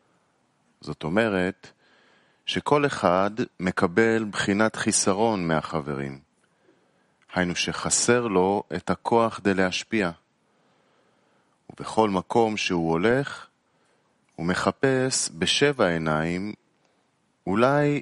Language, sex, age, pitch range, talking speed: English, male, 30-49, 90-120 Hz, 75 wpm